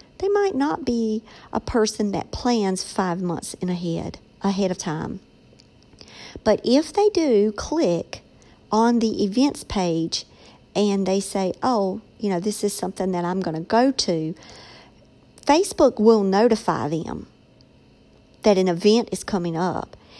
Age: 50-69